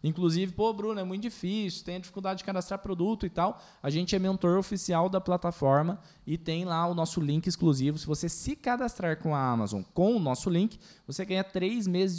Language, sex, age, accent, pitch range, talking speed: Portuguese, male, 20-39, Brazilian, 150-195 Hz, 205 wpm